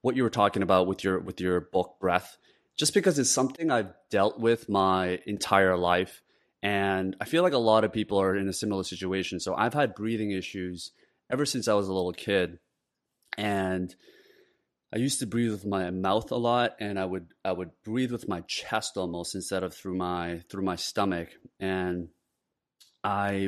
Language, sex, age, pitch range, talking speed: English, male, 30-49, 90-110 Hz, 190 wpm